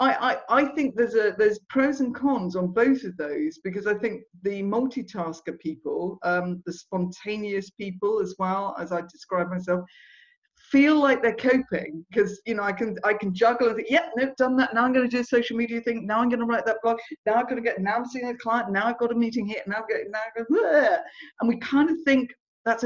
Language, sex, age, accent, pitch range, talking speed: English, female, 50-69, British, 185-265 Hz, 235 wpm